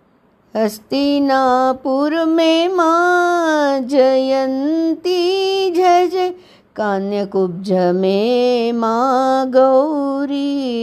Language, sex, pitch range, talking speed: Hindi, female, 215-310 Hz, 55 wpm